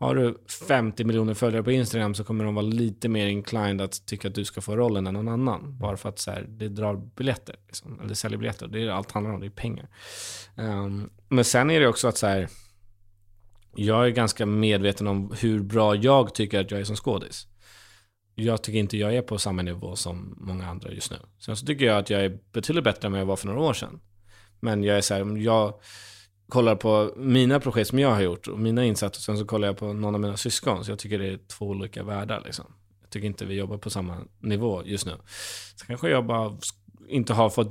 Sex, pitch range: male, 100-115 Hz